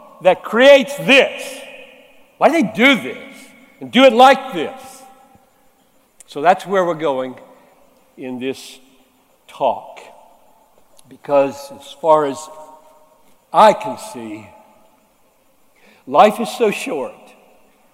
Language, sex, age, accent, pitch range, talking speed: Hindi, male, 60-79, American, 165-265 Hz, 105 wpm